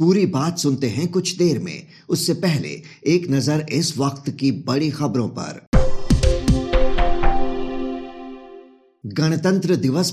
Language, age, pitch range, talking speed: Hindi, 50-69, 130-155 Hz, 115 wpm